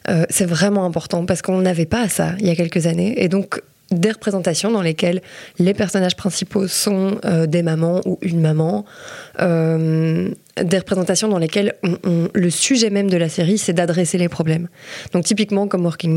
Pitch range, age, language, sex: 170-200 Hz, 20-39, French, female